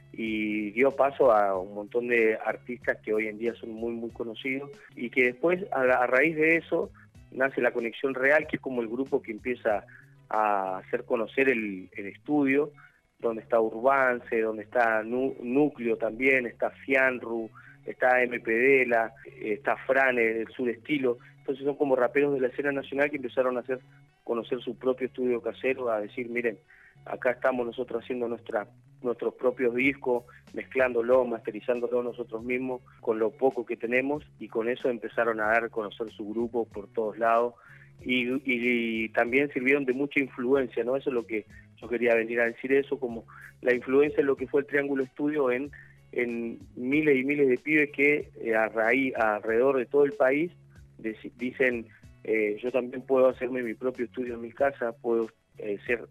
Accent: Argentinian